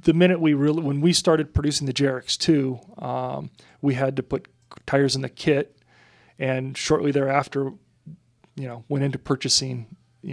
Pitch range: 130-150 Hz